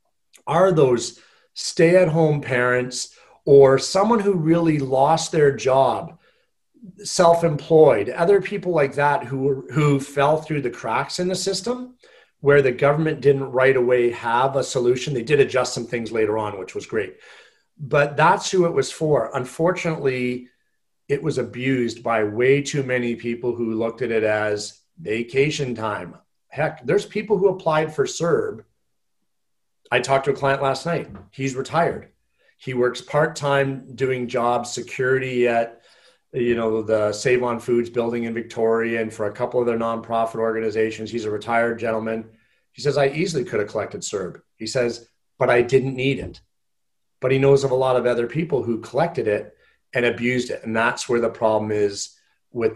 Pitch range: 115-150 Hz